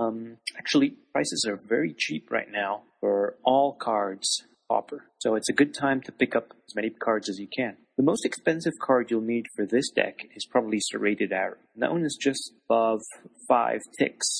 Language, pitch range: English, 105-135 Hz